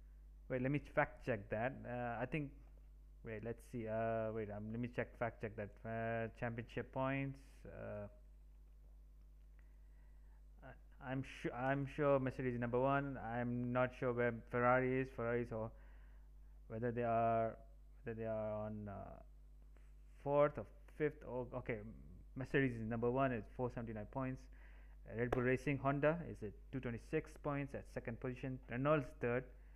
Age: 20-39